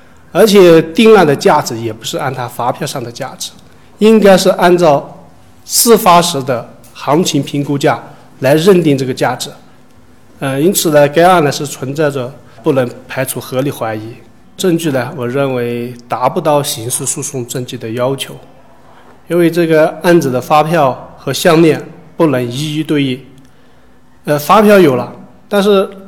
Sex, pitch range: male, 125-165 Hz